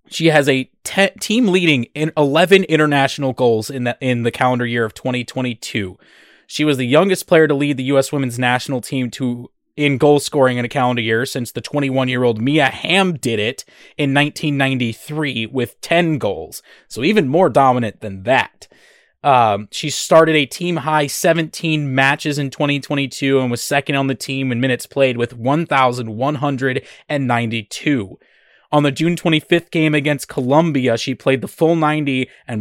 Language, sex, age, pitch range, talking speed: English, male, 20-39, 125-150 Hz, 165 wpm